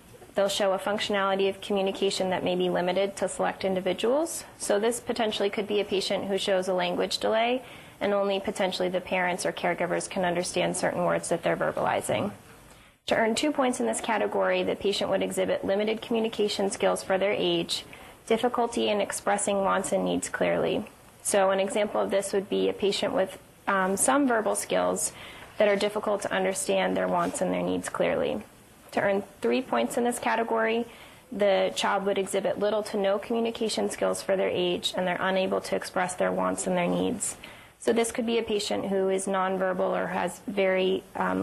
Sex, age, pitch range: female, 20-39, 190-220 Hz